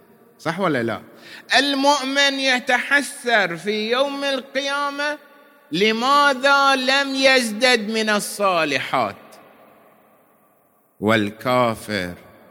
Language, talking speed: Arabic, 65 wpm